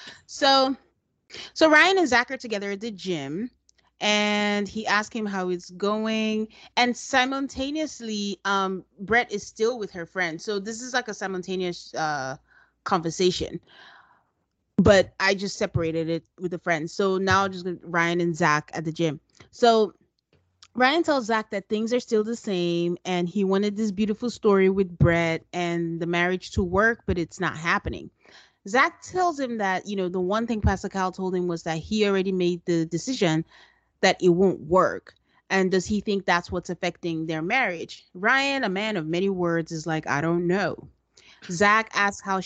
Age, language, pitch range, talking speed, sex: 30-49, English, 170-215 Hz, 180 wpm, female